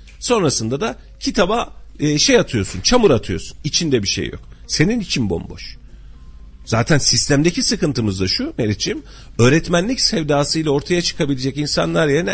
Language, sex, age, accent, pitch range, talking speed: Turkish, male, 40-59, native, 115-175 Hz, 125 wpm